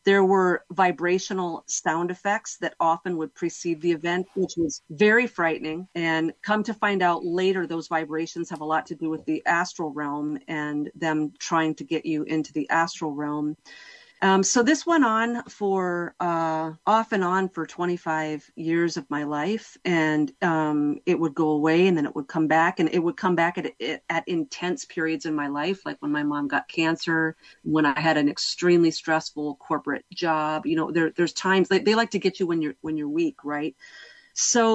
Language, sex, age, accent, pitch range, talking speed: English, female, 40-59, American, 160-190 Hz, 200 wpm